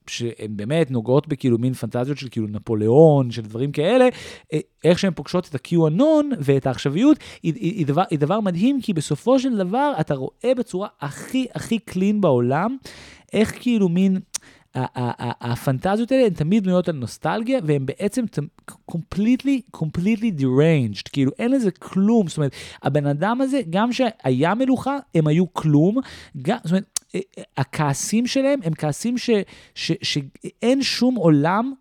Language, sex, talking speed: Hebrew, male, 140 wpm